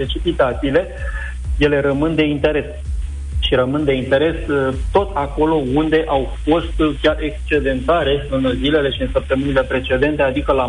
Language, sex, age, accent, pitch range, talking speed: Romanian, male, 30-49, native, 125-150 Hz, 135 wpm